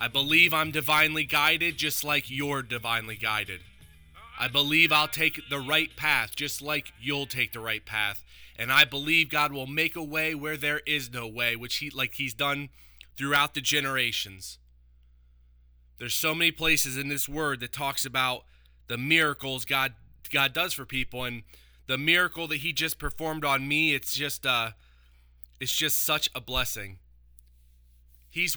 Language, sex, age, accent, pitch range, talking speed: English, male, 20-39, American, 115-155 Hz, 170 wpm